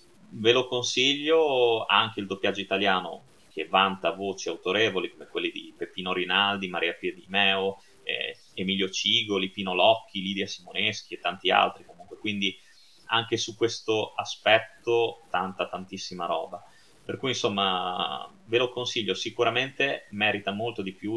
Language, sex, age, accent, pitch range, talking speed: Italian, male, 30-49, native, 95-120 Hz, 135 wpm